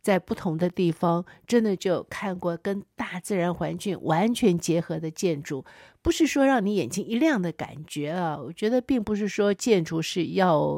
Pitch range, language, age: 165-210 Hz, Chinese, 50-69